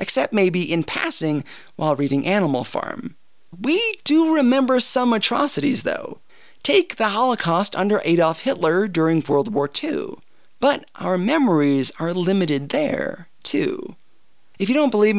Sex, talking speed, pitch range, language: male, 140 wpm, 170-255 Hz, English